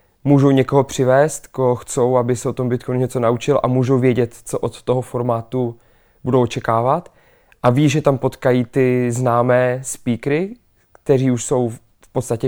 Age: 20-39